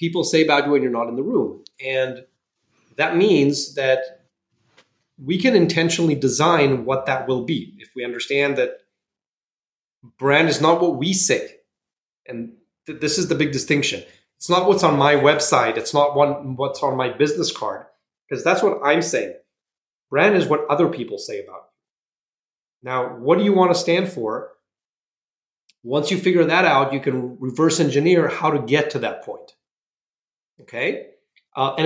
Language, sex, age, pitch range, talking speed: English, male, 30-49, 135-180 Hz, 175 wpm